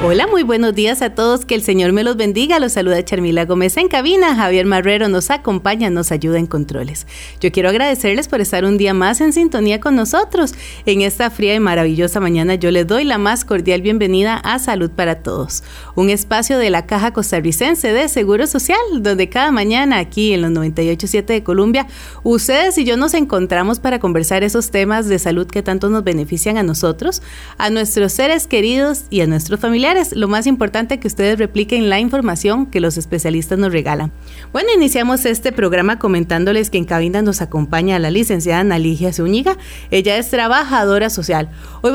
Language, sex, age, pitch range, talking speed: Spanish, female, 30-49, 185-255 Hz, 185 wpm